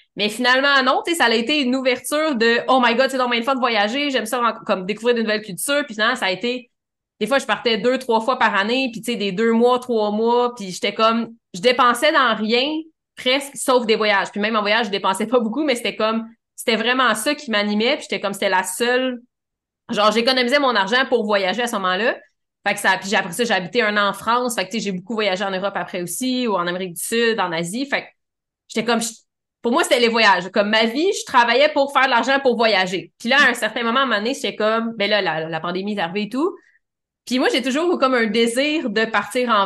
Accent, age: Canadian, 20-39